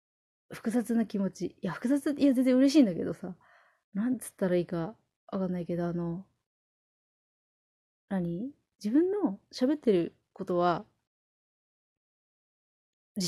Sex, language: female, Japanese